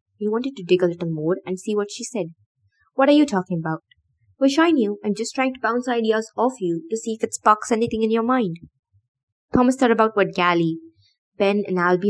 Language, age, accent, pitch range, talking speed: English, 20-39, Indian, 170-230 Hz, 225 wpm